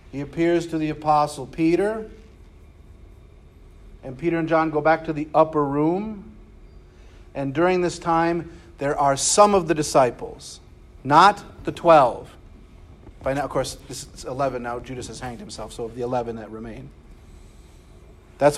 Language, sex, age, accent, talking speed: English, male, 40-59, American, 155 wpm